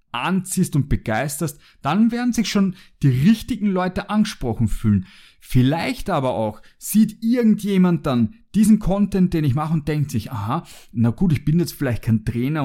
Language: German